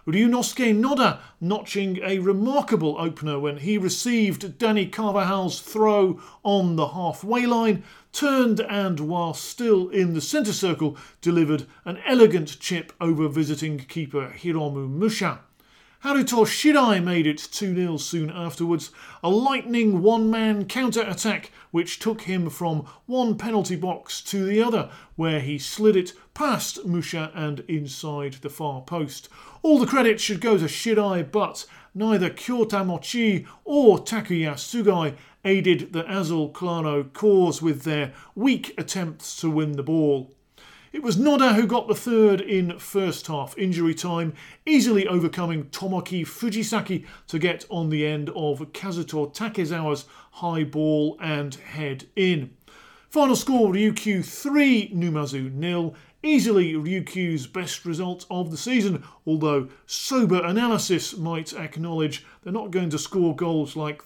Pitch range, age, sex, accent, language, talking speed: 155-215 Hz, 40-59, male, British, English, 140 wpm